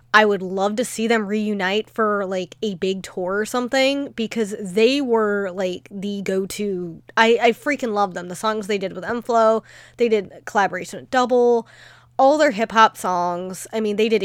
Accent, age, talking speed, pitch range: American, 20-39, 185 wpm, 185-225 Hz